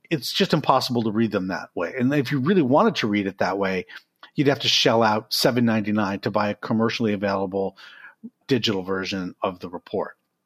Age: 50-69